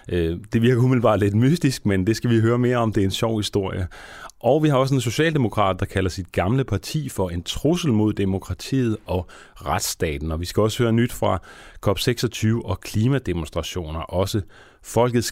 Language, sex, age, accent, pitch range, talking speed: Danish, male, 30-49, native, 95-125 Hz, 185 wpm